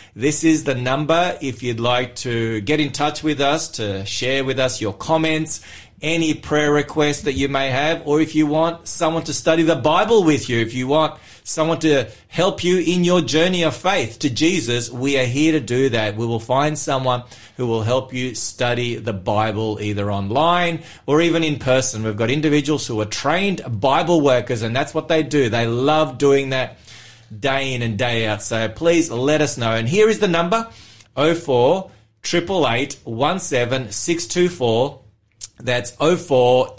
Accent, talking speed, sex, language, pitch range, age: Australian, 175 wpm, male, English, 120-160 Hz, 30-49